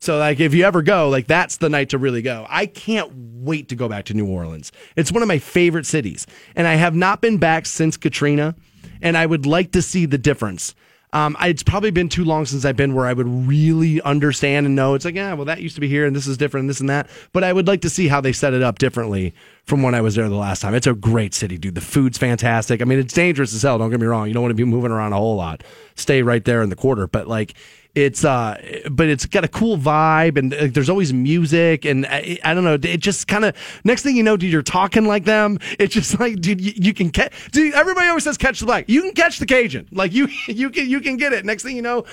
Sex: male